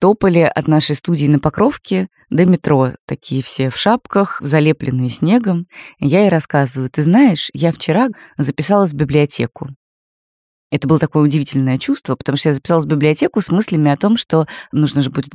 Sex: female